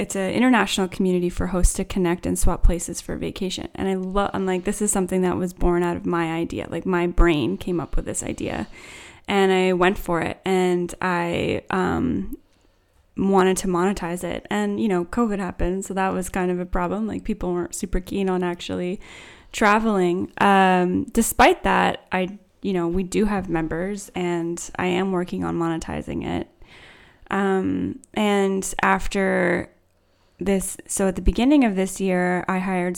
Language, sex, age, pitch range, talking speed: English, female, 10-29, 170-195 Hz, 180 wpm